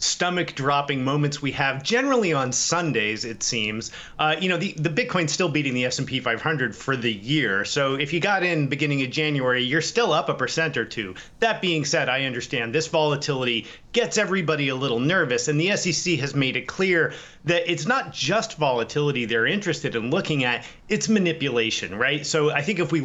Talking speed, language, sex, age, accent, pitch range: 195 wpm, English, male, 30-49, American, 130-165 Hz